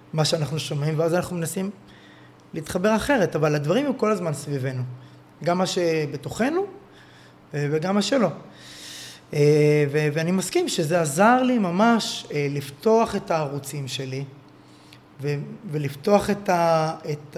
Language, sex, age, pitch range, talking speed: Hebrew, male, 20-39, 145-190 Hz, 130 wpm